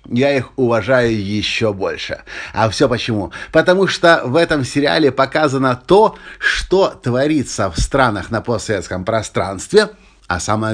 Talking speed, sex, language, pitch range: 135 wpm, male, Russian, 115-155 Hz